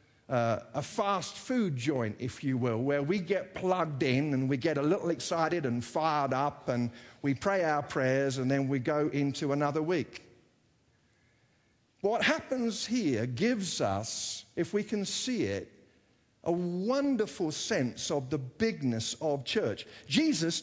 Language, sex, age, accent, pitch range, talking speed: English, male, 50-69, British, 140-210 Hz, 155 wpm